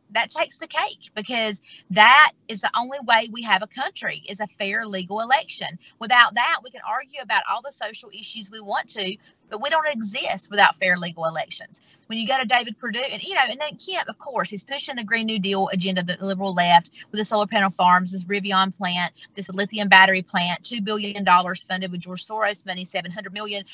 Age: 30-49